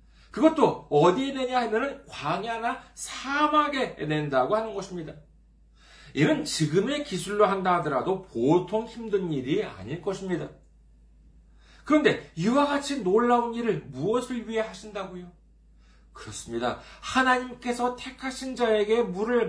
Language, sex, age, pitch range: Korean, male, 40-59, 130-215 Hz